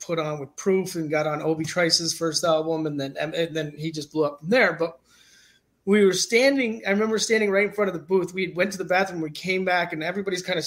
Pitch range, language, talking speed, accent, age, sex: 170-235 Hz, English, 265 wpm, American, 30-49, male